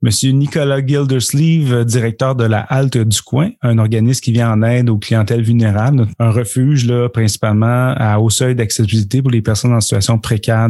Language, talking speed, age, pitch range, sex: French, 180 wpm, 30-49, 110-125 Hz, male